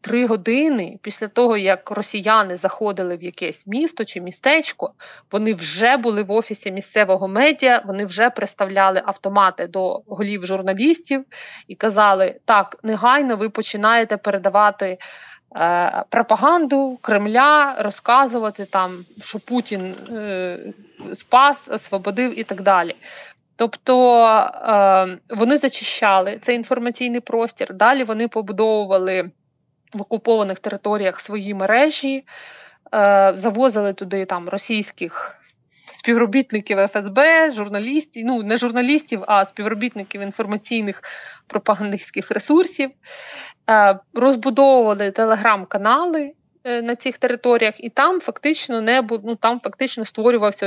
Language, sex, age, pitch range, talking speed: Ukrainian, female, 20-39, 200-245 Hz, 105 wpm